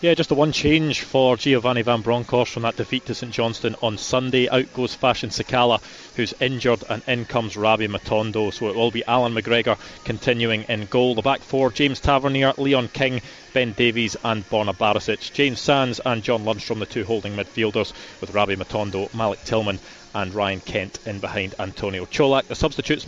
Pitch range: 115-135 Hz